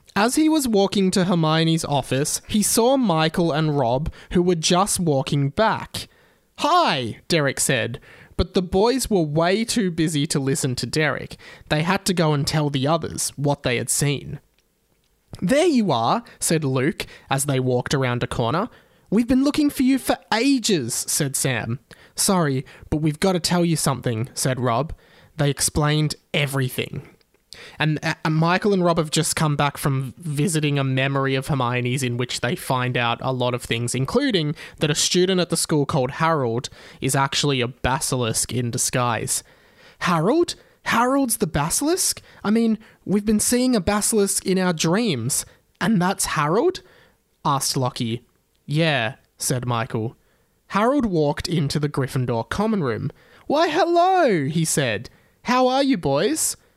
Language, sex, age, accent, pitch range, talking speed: English, male, 20-39, Australian, 135-195 Hz, 160 wpm